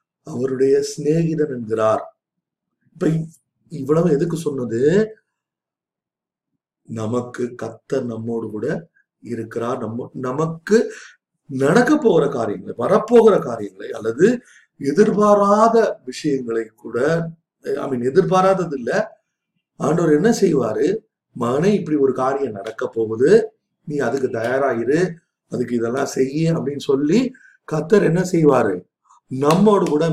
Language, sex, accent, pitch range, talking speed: Tamil, male, native, 130-190 Hz, 100 wpm